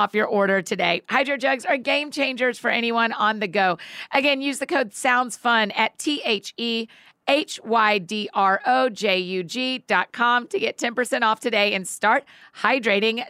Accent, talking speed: American, 155 wpm